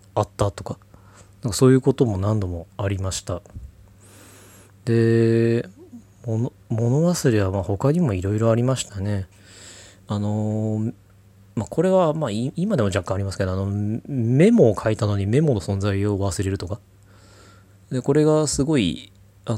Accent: native